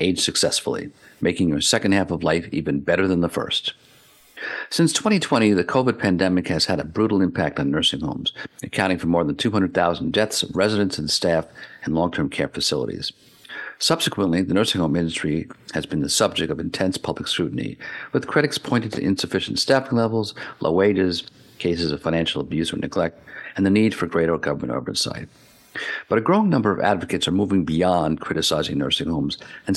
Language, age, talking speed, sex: English, 50-69, 175 wpm, male